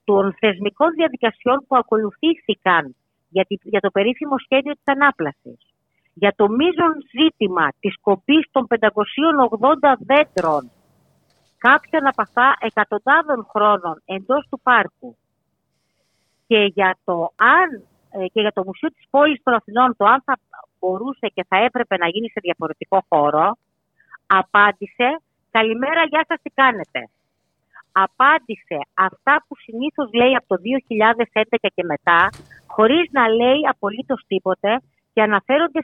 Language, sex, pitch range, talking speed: Greek, female, 190-265 Hz, 130 wpm